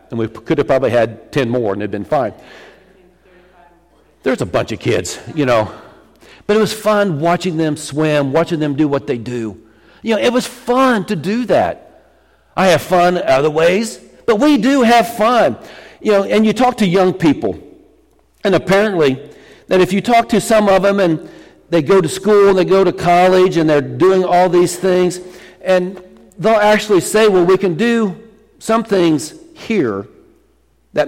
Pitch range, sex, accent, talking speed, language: 145-215 Hz, male, American, 185 wpm, English